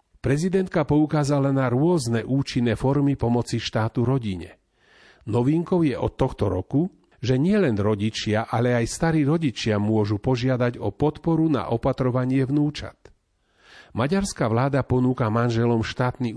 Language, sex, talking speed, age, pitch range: Slovak, male, 120 wpm, 40-59, 115-150 Hz